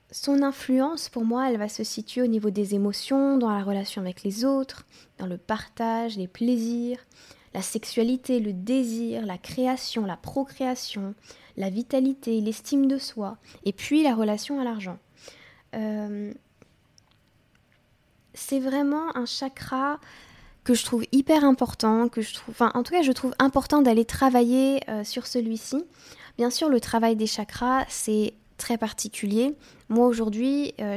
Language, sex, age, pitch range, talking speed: French, female, 20-39, 210-255 Hz, 155 wpm